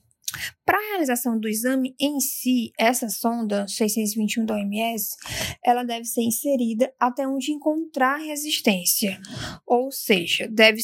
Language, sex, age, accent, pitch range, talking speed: Portuguese, female, 10-29, Brazilian, 230-285 Hz, 125 wpm